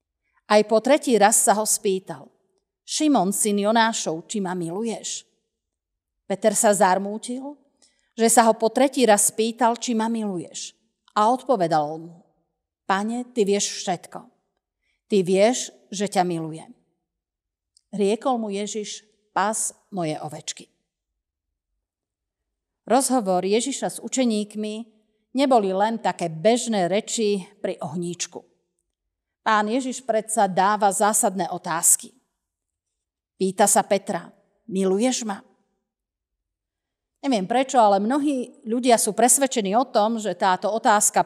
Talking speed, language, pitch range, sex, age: 115 wpm, Slovak, 190-230 Hz, female, 40-59